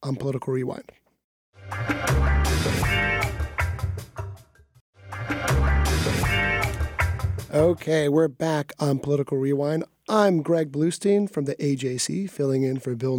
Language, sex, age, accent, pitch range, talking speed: English, male, 30-49, American, 135-180 Hz, 85 wpm